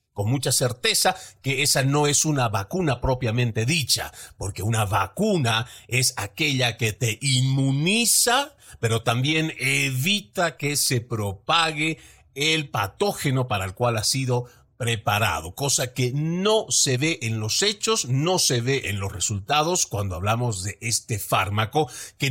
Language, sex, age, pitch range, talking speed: Spanish, male, 50-69, 105-160 Hz, 145 wpm